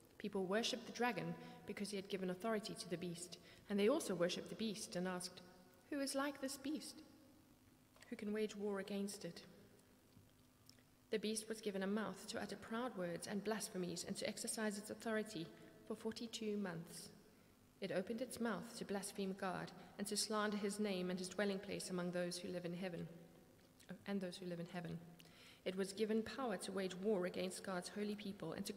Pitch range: 180-225 Hz